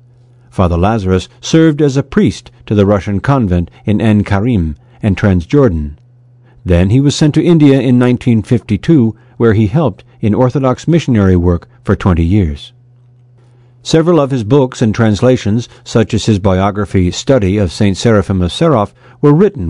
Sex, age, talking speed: male, 50-69, 155 wpm